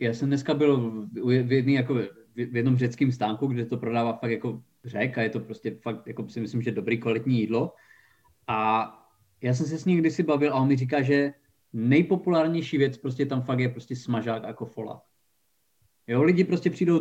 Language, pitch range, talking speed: Czech, 125-170 Hz, 200 wpm